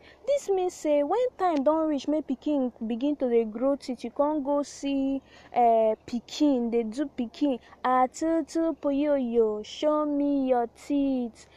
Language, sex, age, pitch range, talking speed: English, female, 20-39, 245-330 Hz, 165 wpm